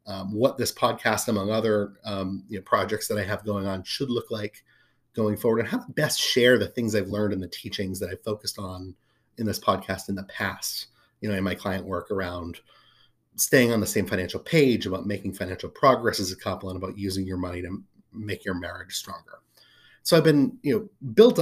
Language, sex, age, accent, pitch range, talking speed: English, male, 30-49, American, 95-120 Hz, 220 wpm